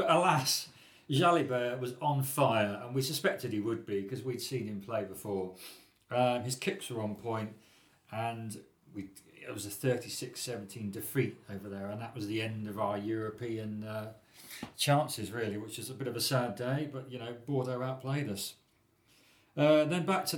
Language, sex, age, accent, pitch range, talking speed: English, male, 40-59, British, 110-150 Hz, 180 wpm